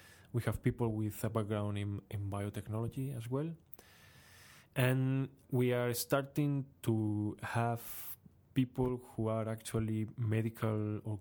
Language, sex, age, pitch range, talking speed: English, male, 20-39, 105-120 Hz, 125 wpm